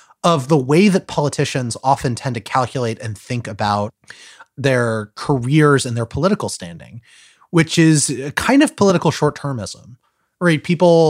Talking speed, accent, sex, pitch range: 135 wpm, American, male, 110-155 Hz